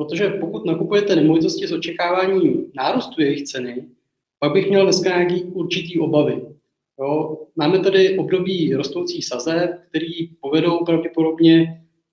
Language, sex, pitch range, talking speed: Czech, male, 150-175 Hz, 125 wpm